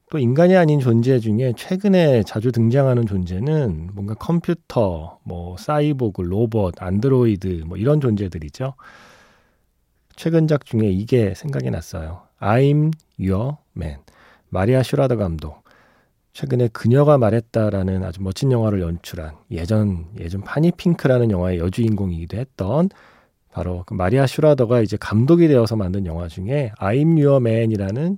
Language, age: Korean, 40-59